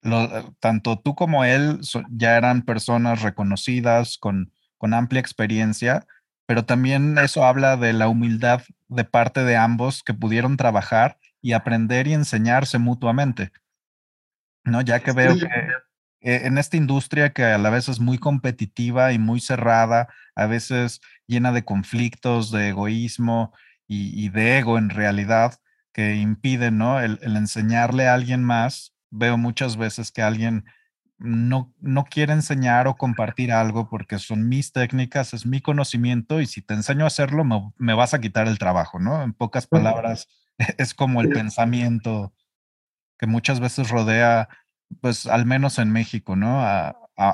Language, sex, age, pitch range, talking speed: Spanish, male, 30-49, 115-130 Hz, 160 wpm